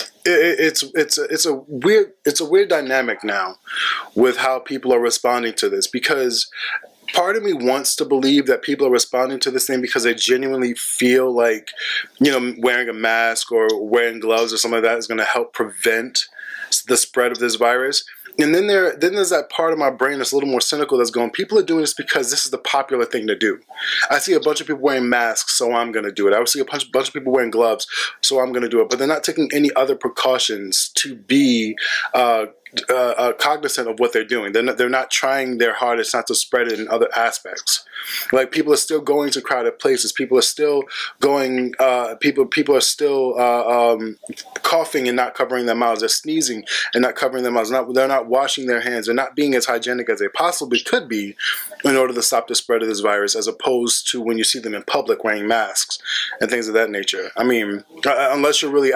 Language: English